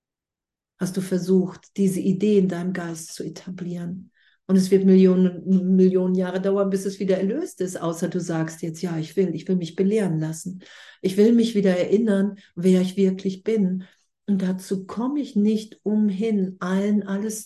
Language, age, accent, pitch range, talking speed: German, 50-69, German, 180-205 Hz, 175 wpm